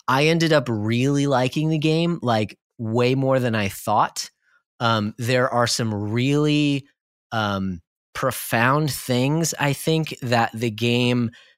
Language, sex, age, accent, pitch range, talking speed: English, male, 30-49, American, 105-145 Hz, 135 wpm